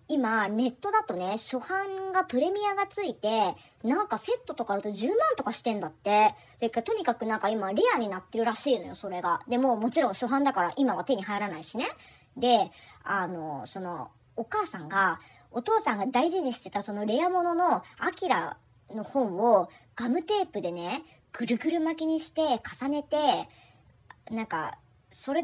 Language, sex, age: Japanese, male, 40-59